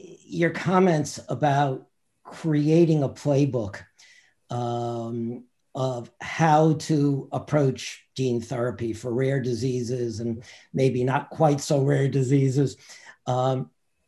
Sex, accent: male, American